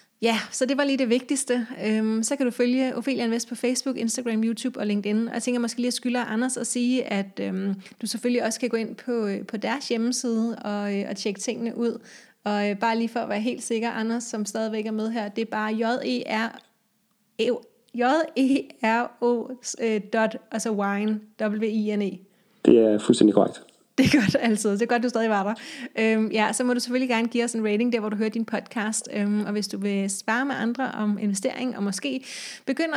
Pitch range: 215-250 Hz